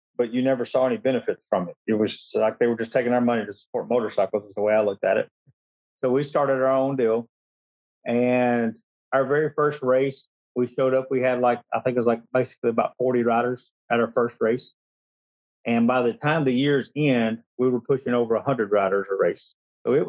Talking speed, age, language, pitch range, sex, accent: 220 wpm, 40-59, English, 110-135 Hz, male, American